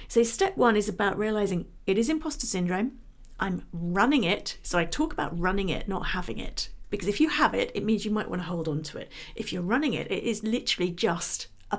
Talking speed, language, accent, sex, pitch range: 235 wpm, English, British, female, 180-235 Hz